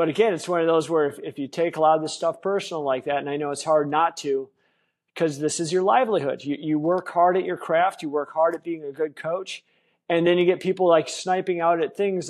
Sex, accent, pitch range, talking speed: male, American, 150-180 Hz, 275 wpm